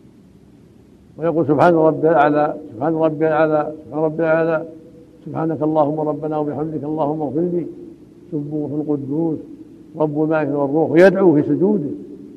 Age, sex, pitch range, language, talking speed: 60-79, male, 150-170 Hz, Arabic, 115 wpm